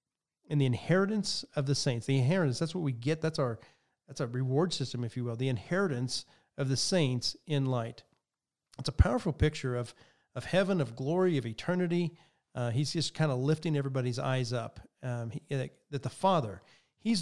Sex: male